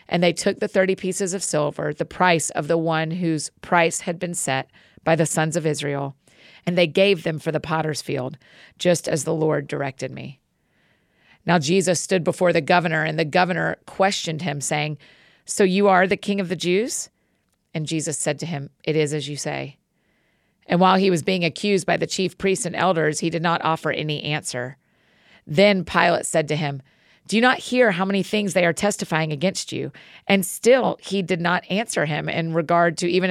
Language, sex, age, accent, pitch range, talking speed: English, female, 40-59, American, 155-190 Hz, 205 wpm